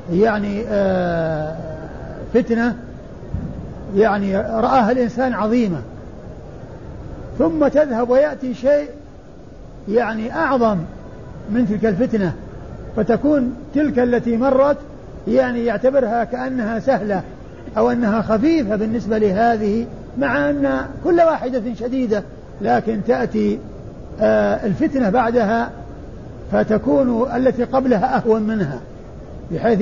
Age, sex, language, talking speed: 50-69, male, Arabic, 85 wpm